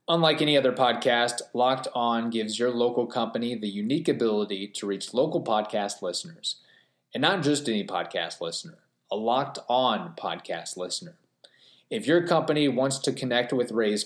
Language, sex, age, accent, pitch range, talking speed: English, male, 30-49, American, 100-125 Hz, 160 wpm